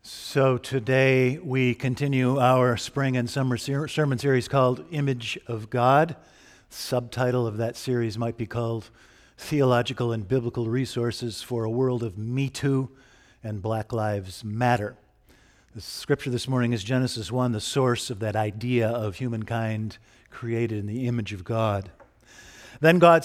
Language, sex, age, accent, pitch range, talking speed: English, male, 50-69, American, 120-145 Hz, 145 wpm